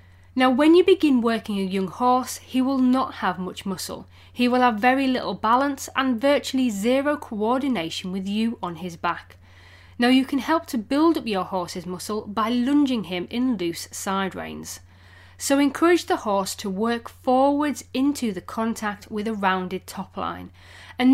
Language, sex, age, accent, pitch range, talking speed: English, female, 30-49, British, 180-265 Hz, 175 wpm